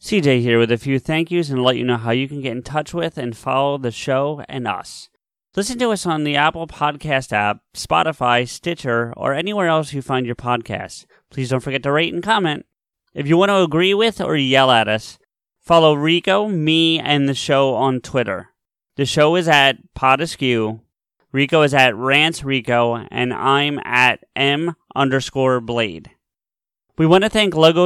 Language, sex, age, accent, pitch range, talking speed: English, male, 30-49, American, 125-160 Hz, 185 wpm